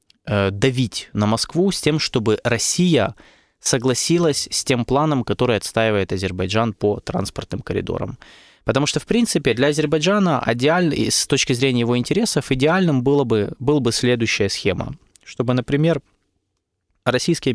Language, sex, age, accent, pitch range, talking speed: Russian, male, 20-39, native, 105-140 Hz, 135 wpm